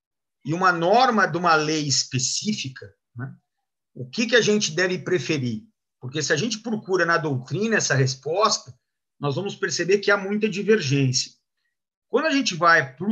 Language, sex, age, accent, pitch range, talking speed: Portuguese, male, 50-69, Brazilian, 135-205 Hz, 165 wpm